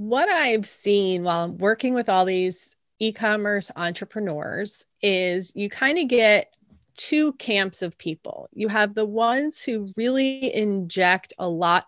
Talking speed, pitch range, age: 140 wpm, 180-230 Hz, 30-49